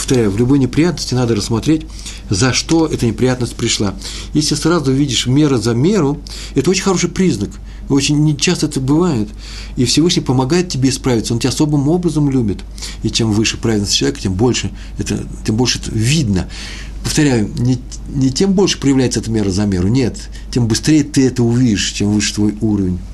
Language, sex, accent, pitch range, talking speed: Russian, male, native, 100-145 Hz, 165 wpm